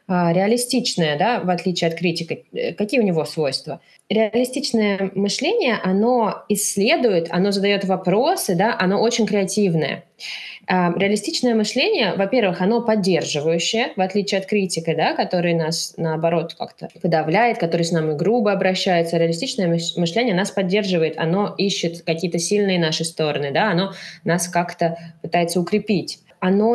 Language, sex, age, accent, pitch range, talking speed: Russian, female, 20-39, native, 165-205 Hz, 130 wpm